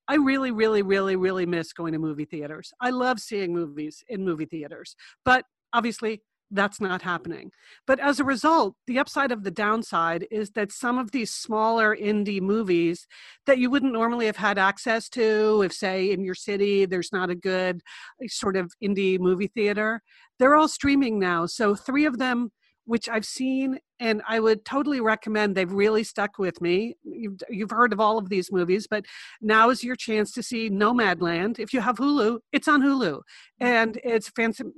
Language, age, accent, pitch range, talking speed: English, 50-69, American, 190-235 Hz, 185 wpm